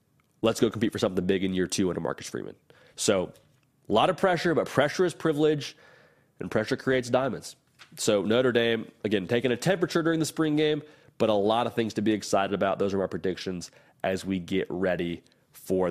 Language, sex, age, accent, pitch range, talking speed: English, male, 30-49, American, 105-135 Hz, 205 wpm